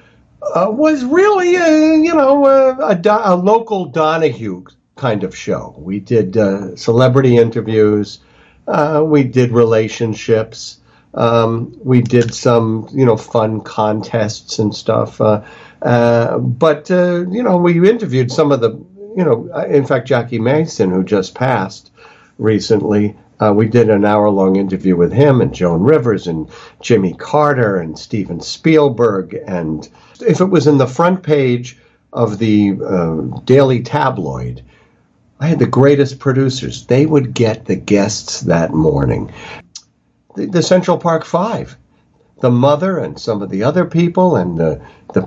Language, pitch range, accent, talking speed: English, 110-155 Hz, American, 150 wpm